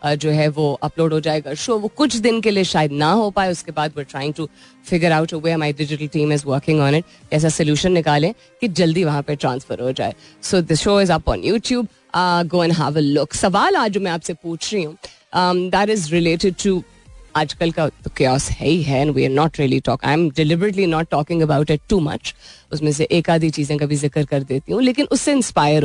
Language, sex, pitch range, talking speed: Hindi, female, 150-195 Hz, 170 wpm